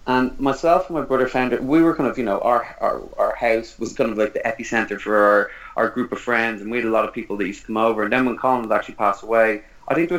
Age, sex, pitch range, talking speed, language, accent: 30-49, male, 110-130 Hz, 305 wpm, English, Irish